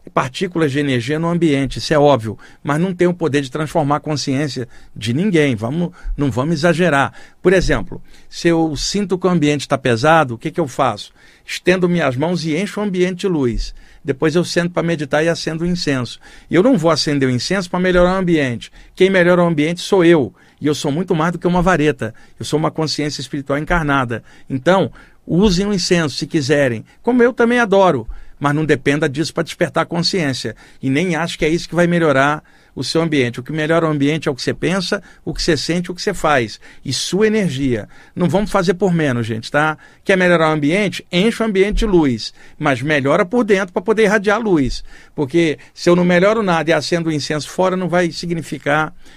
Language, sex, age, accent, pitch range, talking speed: Portuguese, male, 50-69, Brazilian, 145-180 Hz, 215 wpm